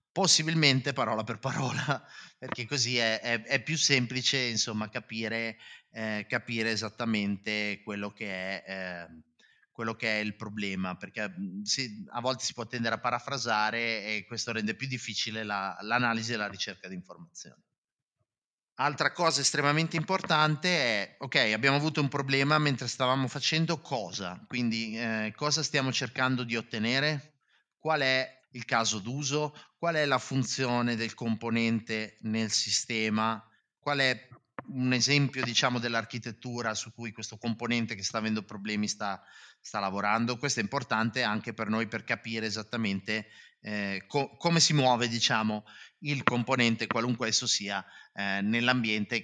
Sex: male